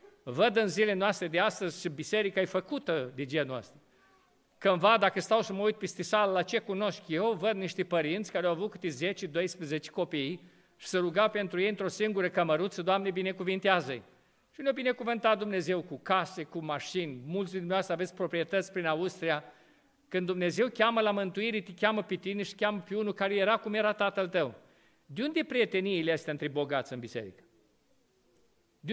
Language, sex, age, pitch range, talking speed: Romanian, male, 50-69, 175-220 Hz, 180 wpm